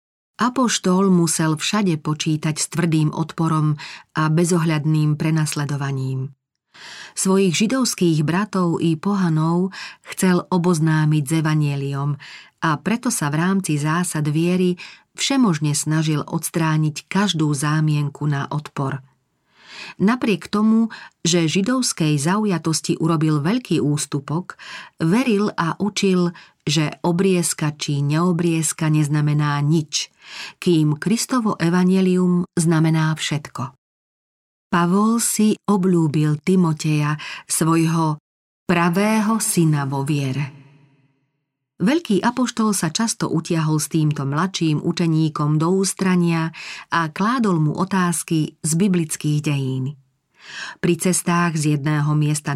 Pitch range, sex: 150-185 Hz, female